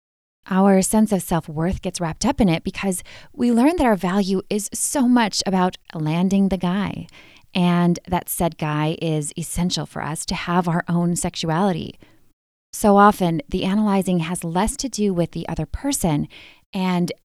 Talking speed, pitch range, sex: 165 wpm, 160-200 Hz, female